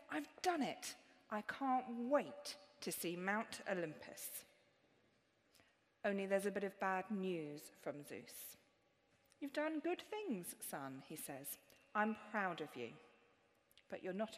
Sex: female